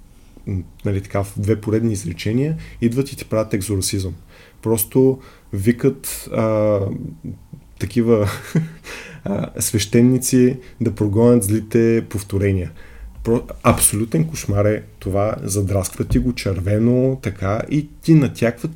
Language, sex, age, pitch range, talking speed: Bulgarian, male, 20-39, 100-125 Hz, 110 wpm